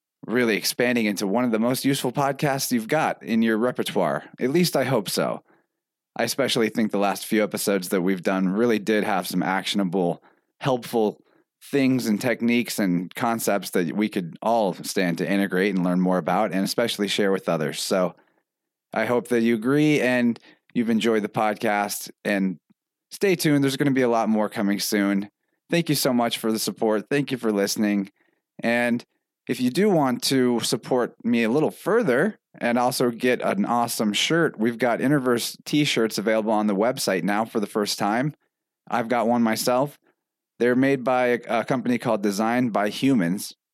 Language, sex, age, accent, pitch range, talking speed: English, male, 30-49, American, 105-125 Hz, 180 wpm